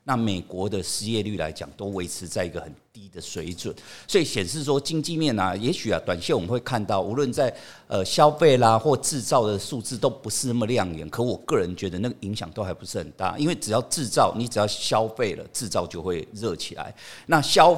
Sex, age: male, 50-69